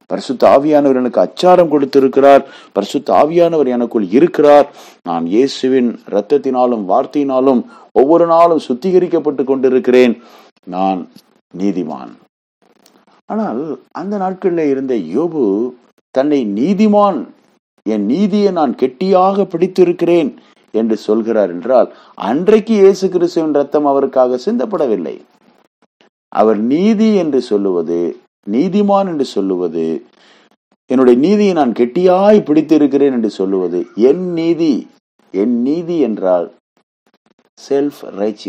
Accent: native